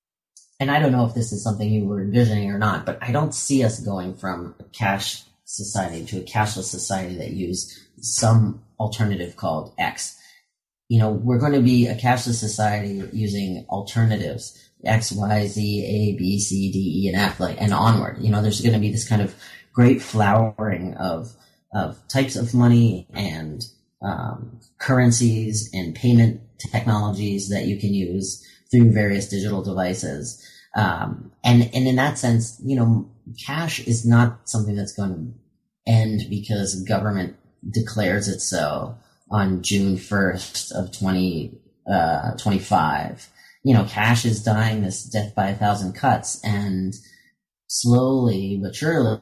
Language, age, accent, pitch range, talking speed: English, 30-49, American, 100-120 Hz, 155 wpm